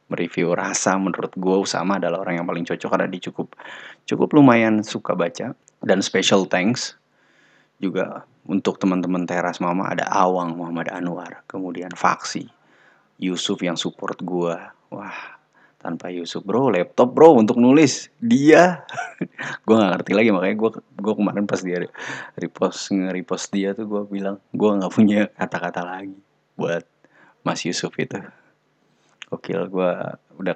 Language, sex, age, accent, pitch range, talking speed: Indonesian, male, 30-49, native, 90-105 Hz, 135 wpm